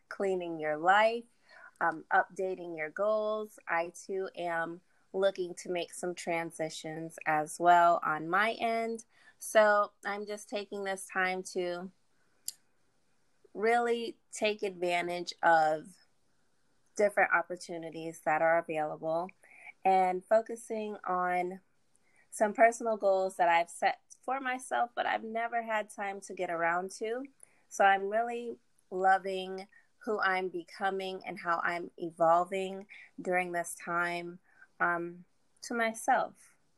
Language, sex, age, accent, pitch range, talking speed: English, female, 20-39, American, 175-210 Hz, 120 wpm